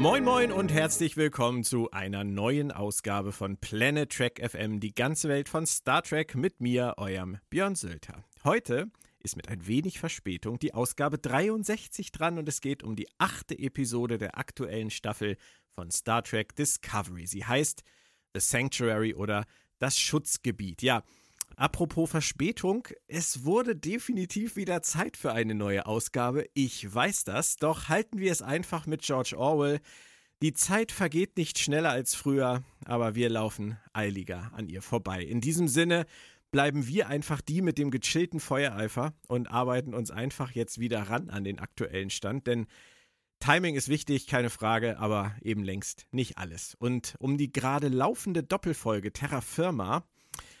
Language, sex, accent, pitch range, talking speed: German, male, German, 110-155 Hz, 160 wpm